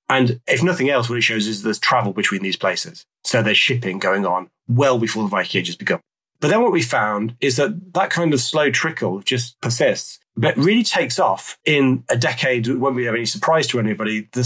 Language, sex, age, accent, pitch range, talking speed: English, male, 30-49, British, 110-140 Hz, 225 wpm